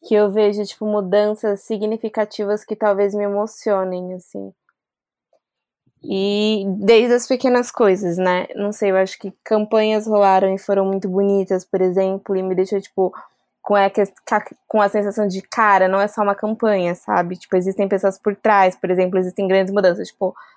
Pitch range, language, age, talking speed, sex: 195-220 Hz, Portuguese, 20-39, 165 wpm, female